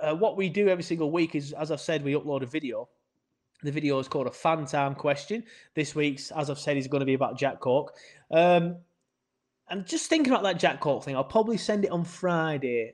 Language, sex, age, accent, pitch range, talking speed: English, male, 20-39, British, 135-170 Hz, 230 wpm